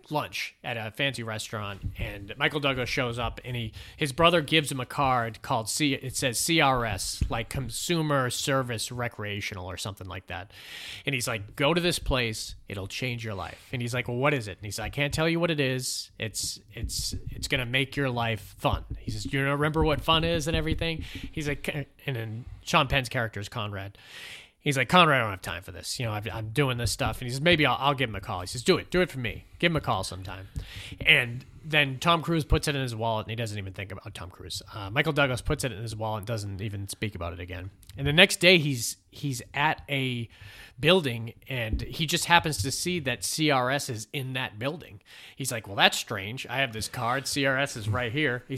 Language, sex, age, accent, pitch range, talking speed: English, male, 30-49, American, 105-140 Hz, 240 wpm